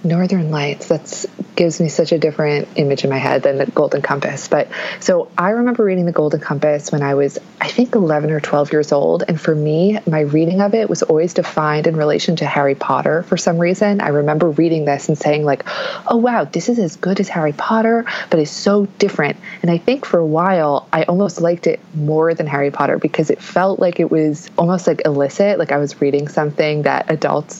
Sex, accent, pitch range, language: female, American, 145-180 Hz, English